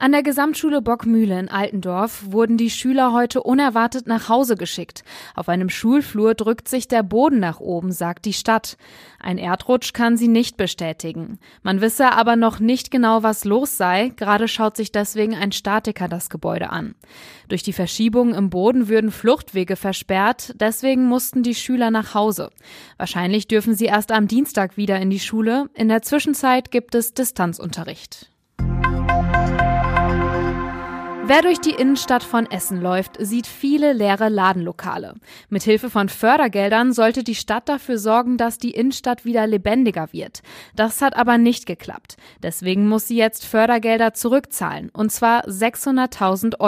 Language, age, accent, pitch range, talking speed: German, 20-39, German, 195-245 Hz, 155 wpm